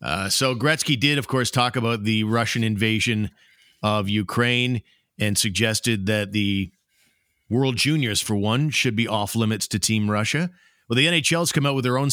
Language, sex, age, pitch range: English, male, 50-69, 105-125 Hz